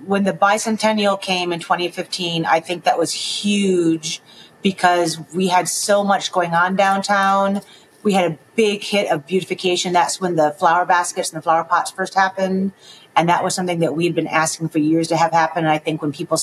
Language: English